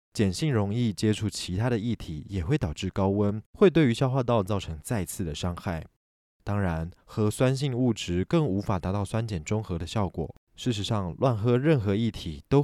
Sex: male